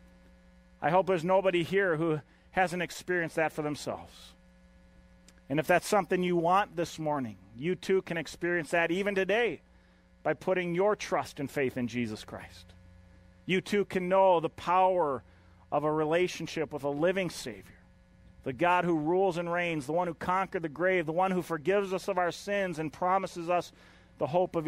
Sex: male